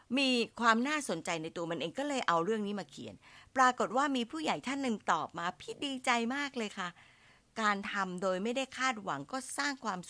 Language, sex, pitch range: Thai, female, 160-235 Hz